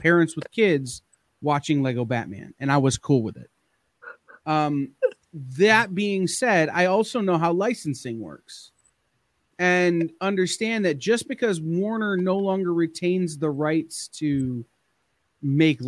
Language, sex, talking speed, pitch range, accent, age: English, male, 130 wpm, 135-170 Hz, American, 30-49